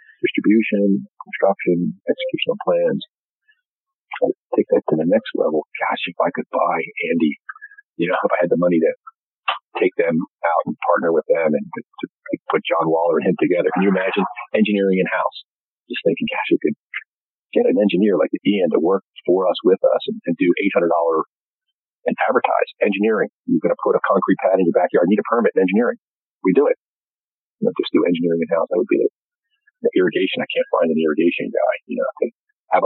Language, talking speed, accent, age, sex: English, 200 wpm, American, 40-59, male